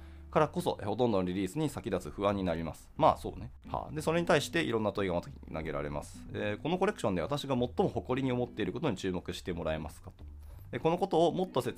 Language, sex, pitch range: Japanese, male, 95-140 Hz